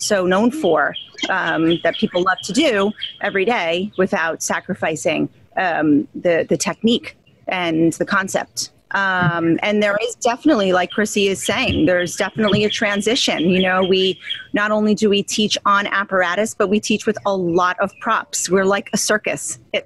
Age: 30-49